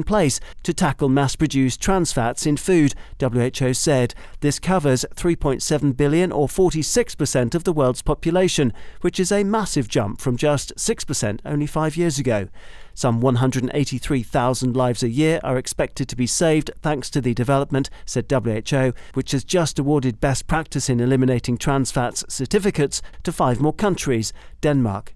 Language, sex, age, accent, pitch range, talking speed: English, male, 40-59, British, 125-155 Hz, 155 wpm